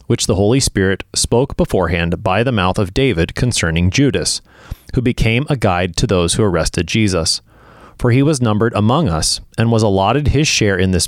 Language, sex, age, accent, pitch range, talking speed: English, male, 30-49, American, 90-125 Hz, 190 wpm